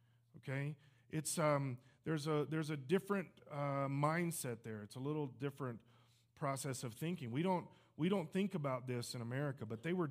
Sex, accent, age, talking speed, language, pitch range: male, American, 40-59, 180 wpm, English, 135-175 Hz